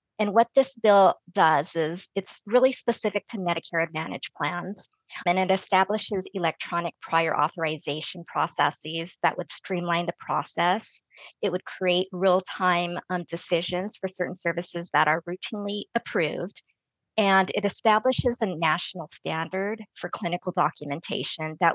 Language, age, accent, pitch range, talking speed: English, 40-59, American, 165-200 Hz, 130 wpm